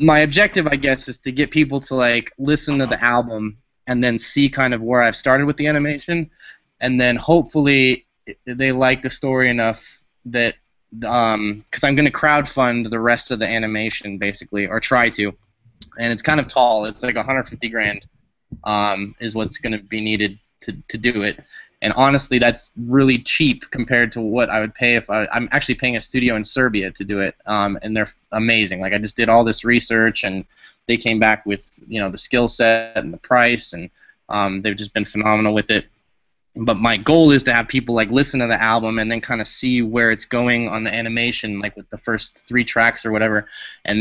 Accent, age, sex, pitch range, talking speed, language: American, 20-39, male, 105-125 Hz, 210 wpm, English